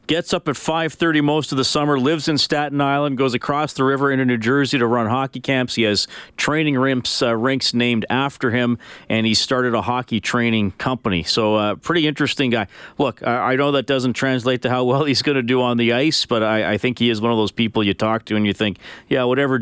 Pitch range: 105-135 Hz